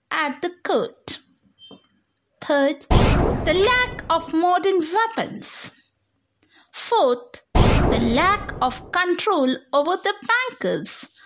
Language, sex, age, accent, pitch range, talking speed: English, female, 60-79, Indian, 300-465 Hz, 90 wpm